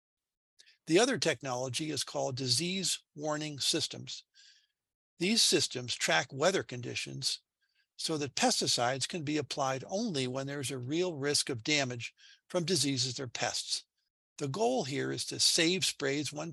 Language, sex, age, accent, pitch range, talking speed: English, male, 60-79, American, 130-170 Hz, 140 wpm